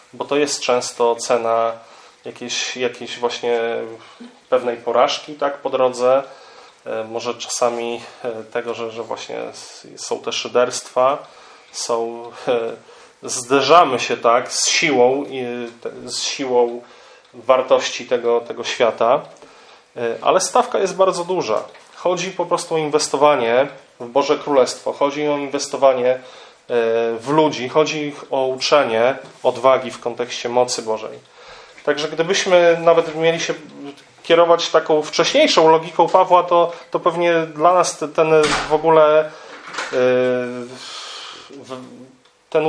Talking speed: 115 wpm